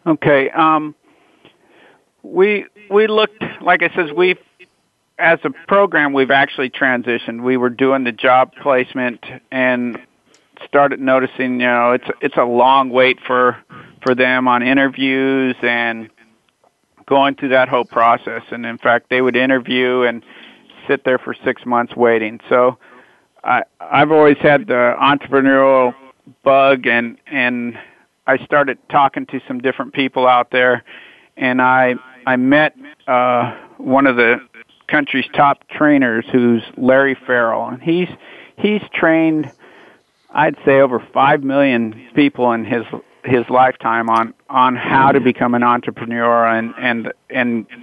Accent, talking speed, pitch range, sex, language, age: American, 140 wpm, 120-140 Hz, male, English, 50-69